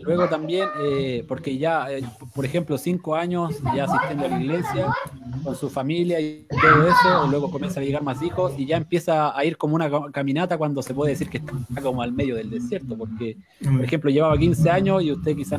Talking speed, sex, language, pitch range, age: 215 wpm, male, Spanish, 135-165 Hz, 30-49